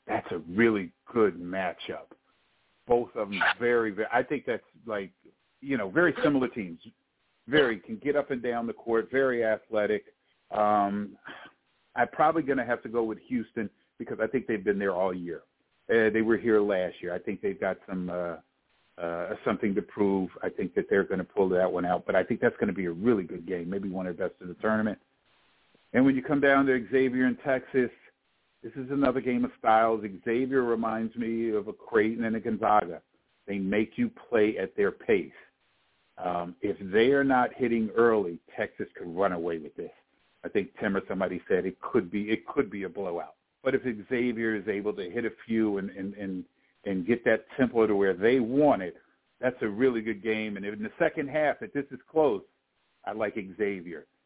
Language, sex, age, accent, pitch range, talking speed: English, male, 50-69, American, 100-125 Hz, 210 wpm